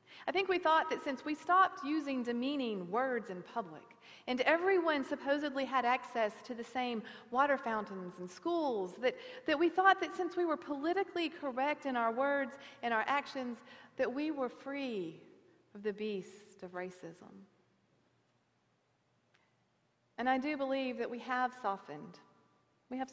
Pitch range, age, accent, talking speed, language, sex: 210-280 Hz, 40-59, American, 155 wpm, English, female